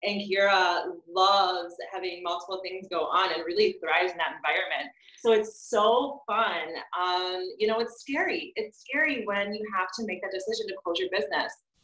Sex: female